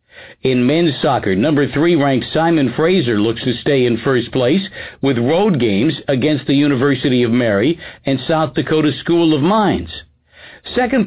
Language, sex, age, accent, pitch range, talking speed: English, male, 60-79, American, 135-180 Hz, 150 wpm